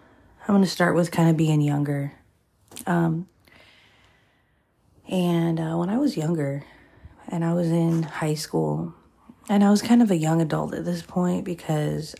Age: 30-49